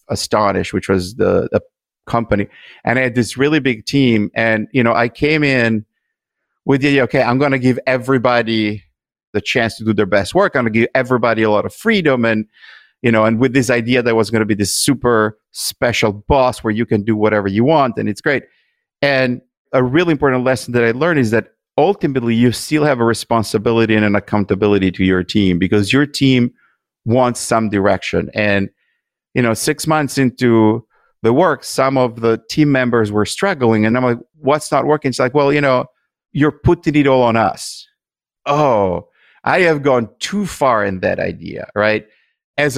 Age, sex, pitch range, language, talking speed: 50-69, male, 110-135 Hz, English, 200 wpm